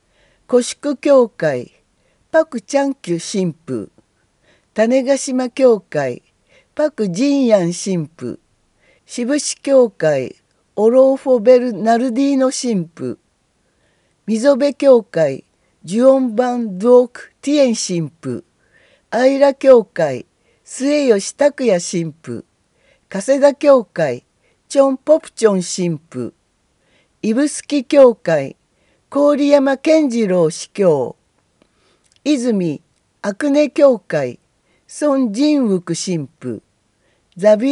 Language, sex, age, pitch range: Japanese, female, 50-69, 180-280 Hz